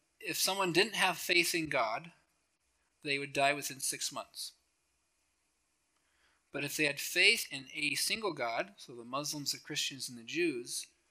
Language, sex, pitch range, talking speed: English, male, 145-170 Hz, 160 wpm